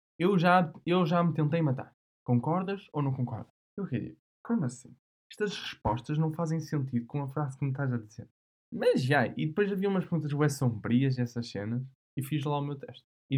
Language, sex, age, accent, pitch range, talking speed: Portuguese, male, 10-29, Brazilian, 120-160 Hz, 205 wpm